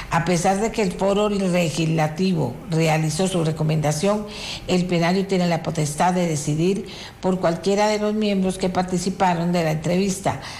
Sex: female